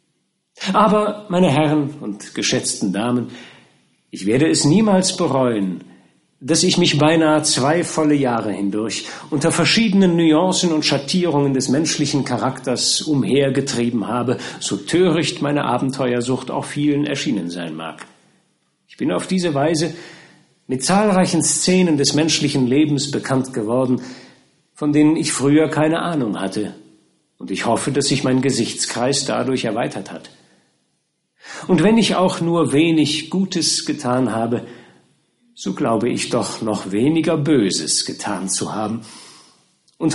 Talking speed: 130 wpm